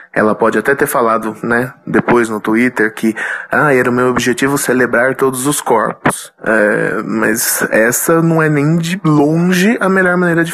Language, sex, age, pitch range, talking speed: Portuguese, male, 20-39, 120-170 Hz, 175 wpm